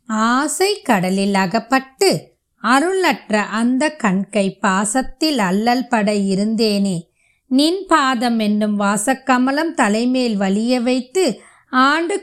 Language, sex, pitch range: Tamil, female, 205-275 Hz